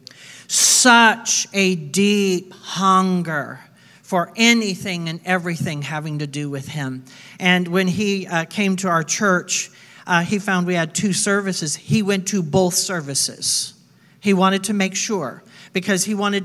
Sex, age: male, 50-69